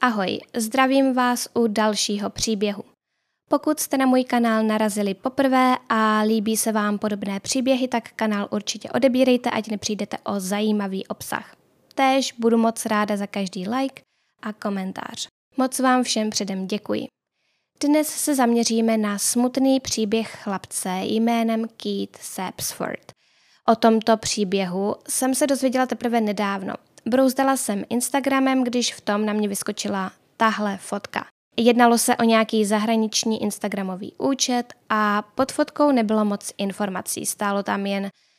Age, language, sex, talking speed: 10-29, Czech, female, 135 wpm